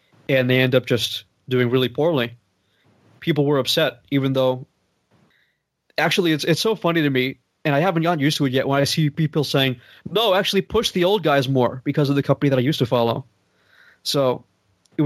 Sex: male